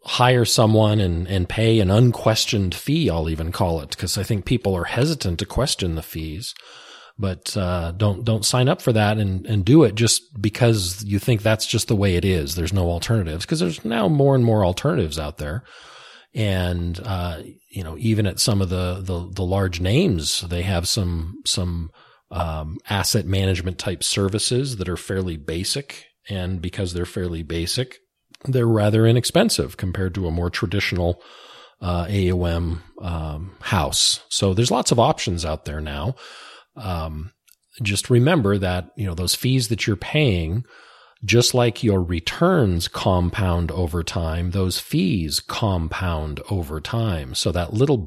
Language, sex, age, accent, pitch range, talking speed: English, male, 40-59, American, 90-115 Hz, 165 wpm